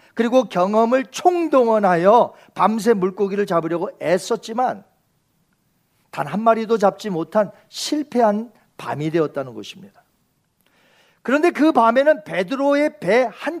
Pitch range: 180-265 Hz